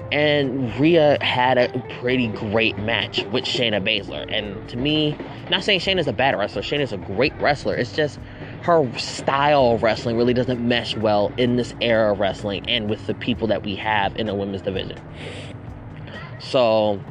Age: 20-39